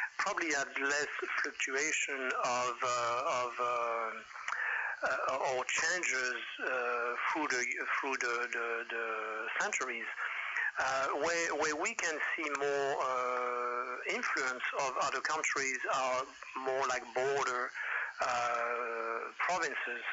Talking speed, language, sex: 110 wpm, English, male